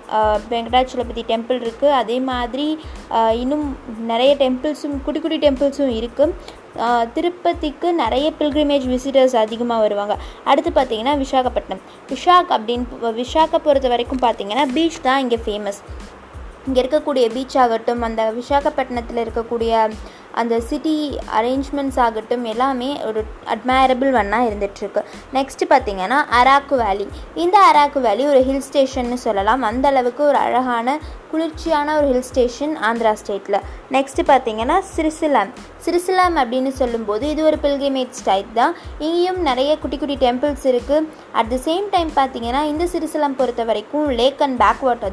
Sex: female